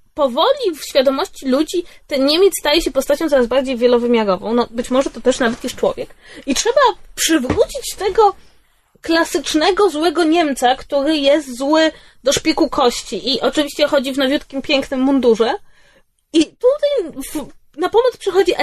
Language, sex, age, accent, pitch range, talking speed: Polish, female, 20-39, native, 275-385 Hz, 145 wpm